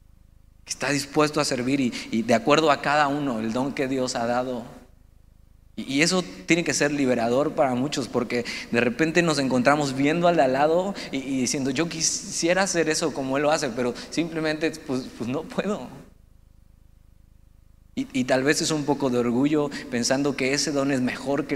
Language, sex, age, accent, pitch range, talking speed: Spanish, male, 30-49, Mexican, 90-140 Hz, 195 wpm